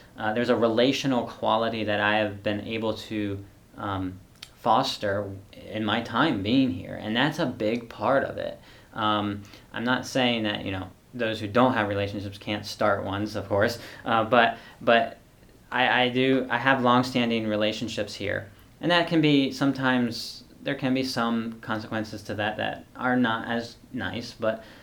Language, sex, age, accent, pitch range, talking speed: English, male, 10-29, American, 105-120 Hz, 170 wpm